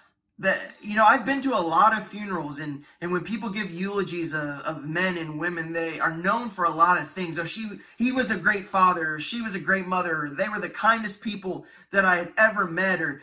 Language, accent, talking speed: English, American, 245 wpm